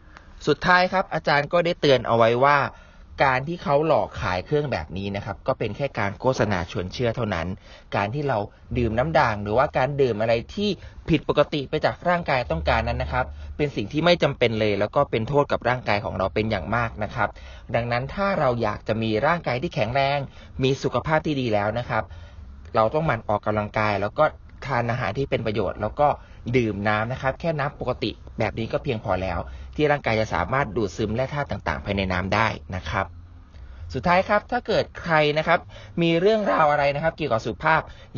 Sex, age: male, 20-39